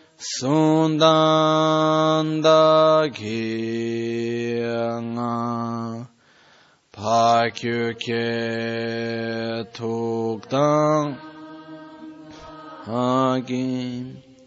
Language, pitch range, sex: Italian, 115-160 Hz, male